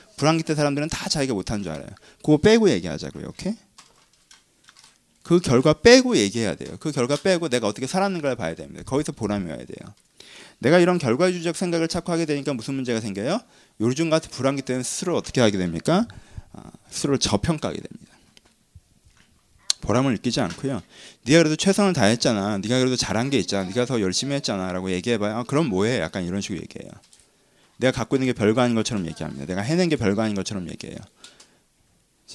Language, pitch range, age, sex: Korean, 105-165 Hz, 30-49, male